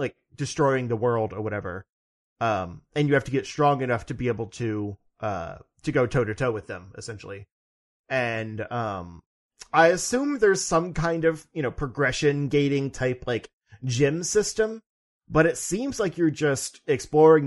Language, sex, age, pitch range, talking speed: English, male, 30-49, 110-145 Hz, 170 wpm